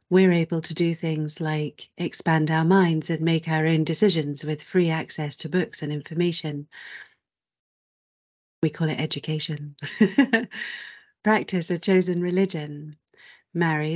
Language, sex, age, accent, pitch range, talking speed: English, female, 40-59, British, 155-175 Hz, 130 wpm